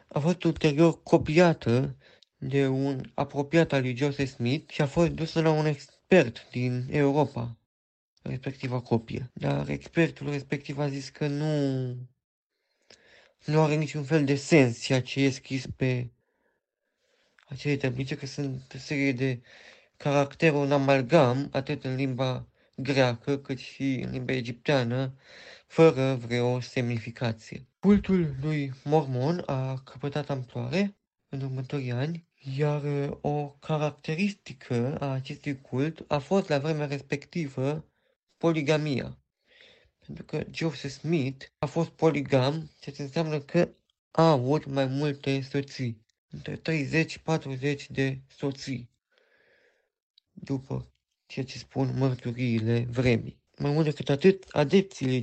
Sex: male